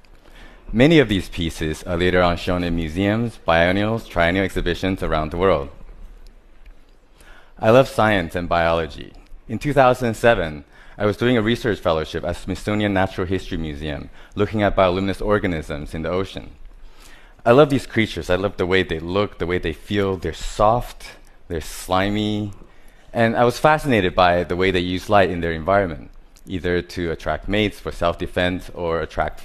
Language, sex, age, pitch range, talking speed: English, male, 30-49, 85-105 Hz, 165 wpm